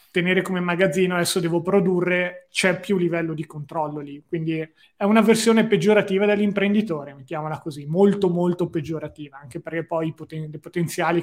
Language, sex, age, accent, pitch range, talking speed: Italian, male, 20-39, native, 160-190 Hz, 150 wpm